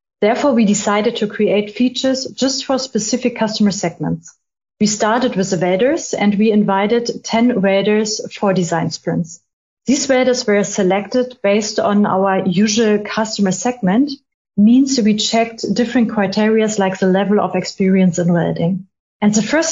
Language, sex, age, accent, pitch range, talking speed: English, female, 30-49, German, 195-250 Hz, 150 wpm